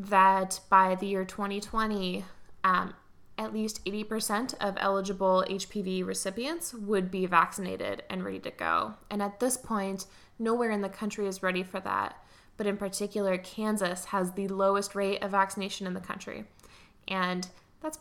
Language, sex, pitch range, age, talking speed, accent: English, female, 185-220 Hz, 10-29, 155 wpm, American